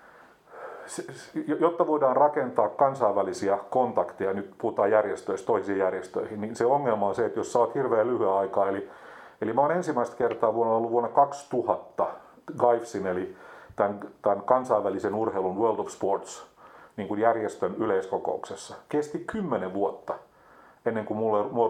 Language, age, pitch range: Finnish, 40-59, 100-130 Hz